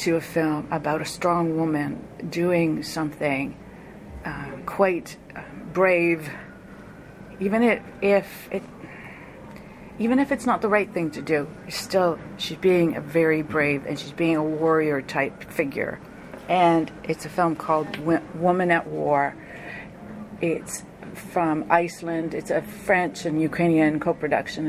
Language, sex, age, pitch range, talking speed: English, female, 50-69, 165-210 Hz, 135 wpm